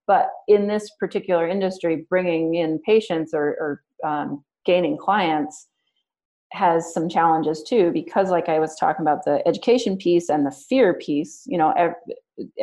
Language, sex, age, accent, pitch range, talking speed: English, female, 30-49, American, 155-190 Hz, 155 wpm